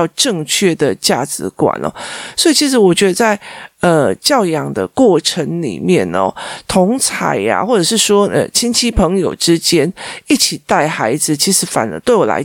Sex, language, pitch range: male, Chinese, 165-235 Hz